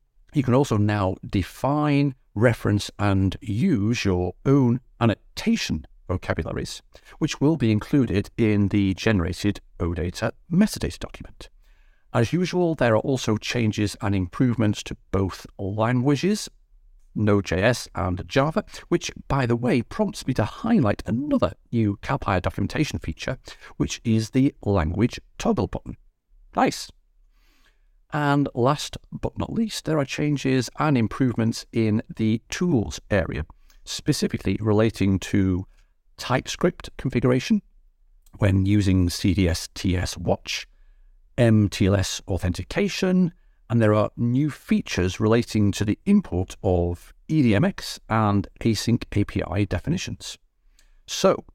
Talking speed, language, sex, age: 115 wpm, German, male, 60-79